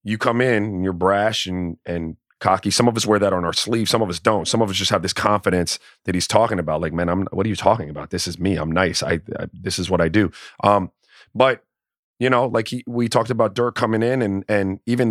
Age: 30-49